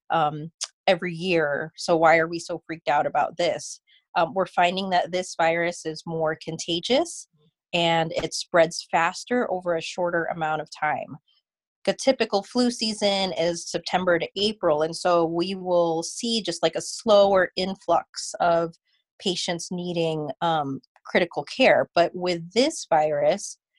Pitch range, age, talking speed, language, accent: 170-190 Hz, 30-49, 150 wpm, English, American